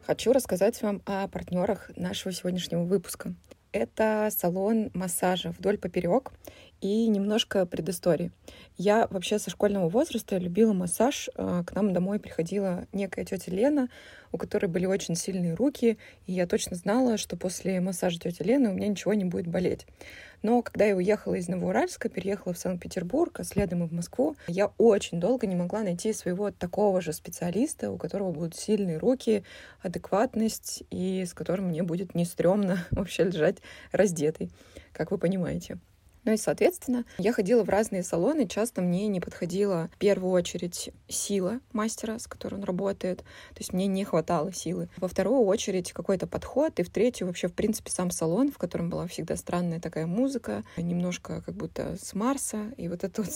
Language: Russian